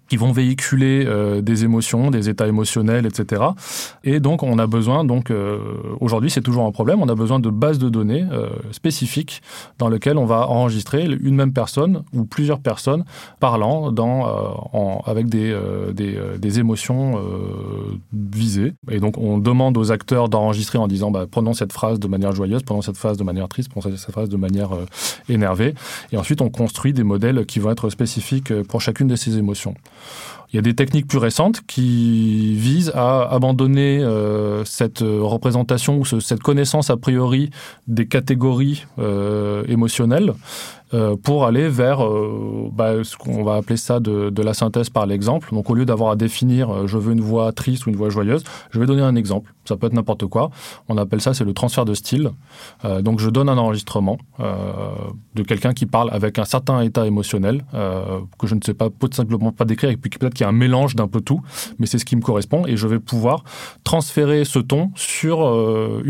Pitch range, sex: 105-130 Hz, male